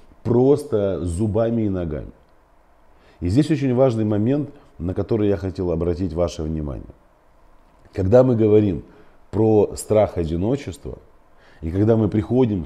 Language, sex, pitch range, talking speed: Russian, male, 85-115 Hz, 125 wpm